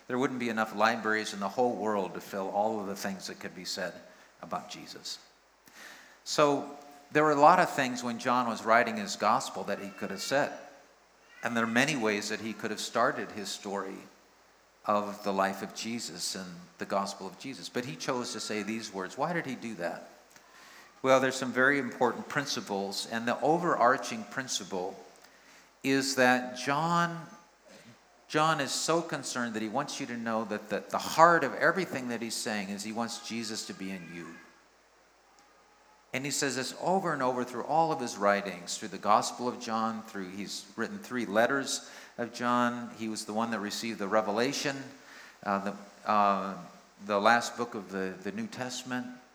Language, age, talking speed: English, 50-69, 185 wpm